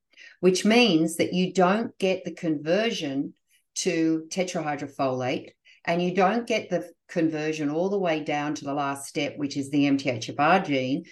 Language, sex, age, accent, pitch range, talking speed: English, female, 50-69, Australian, 155-195 Hz, 155 wpm